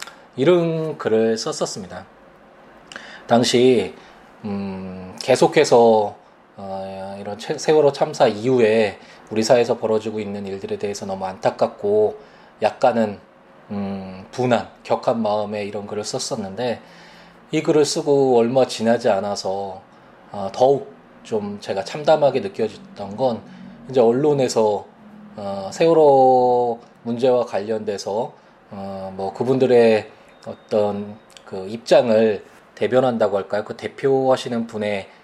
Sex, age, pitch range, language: male, 20-39, 105-130 Hz, Korean